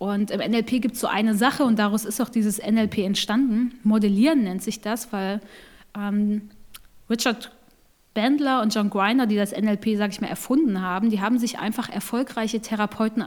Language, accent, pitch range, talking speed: German, German, 205-250 Hz, 180 wpm